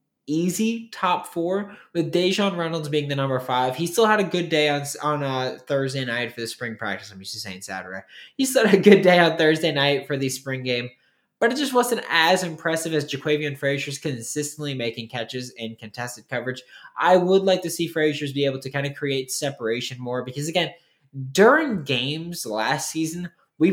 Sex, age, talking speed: male, 20-39, 200 wpm